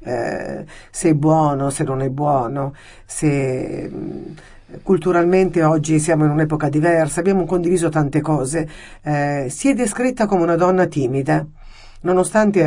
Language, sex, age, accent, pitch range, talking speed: Italian, female, 50-69, native, 150-180 Hz, 130 wpm